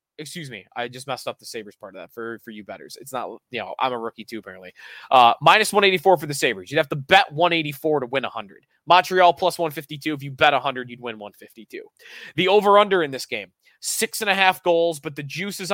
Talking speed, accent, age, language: 235 wpm, American, 20-39, English